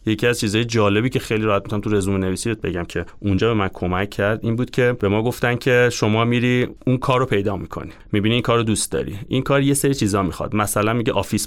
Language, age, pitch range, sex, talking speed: Persian, 30-49, 100-130 Hz, male, 240 wpm